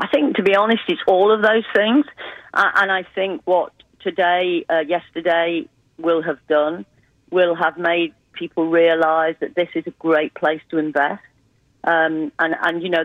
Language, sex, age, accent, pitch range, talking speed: English, female, 40-59, British, 155-180 Hz, 175 wpm